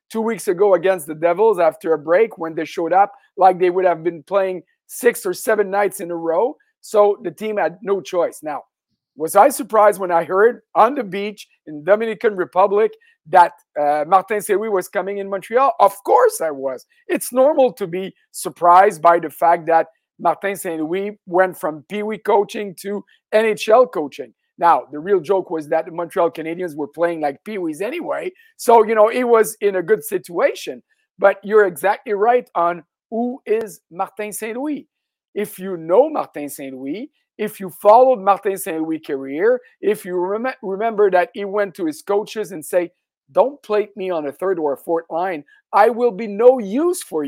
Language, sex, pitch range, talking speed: English, male, 180-230 Hz, 185 wpm